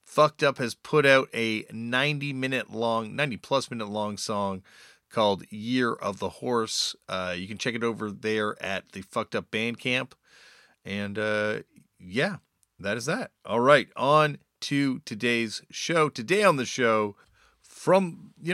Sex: male